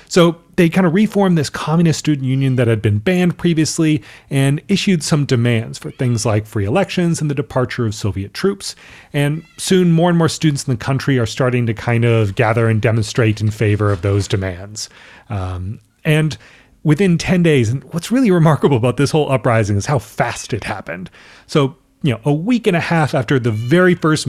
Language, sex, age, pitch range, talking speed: English, male, 30-49, 120-160 Hz, 200 wpm